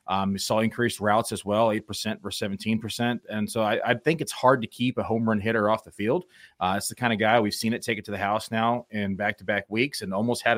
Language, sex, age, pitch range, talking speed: English, male, 30-49, 105-120 Hz, 265 wpm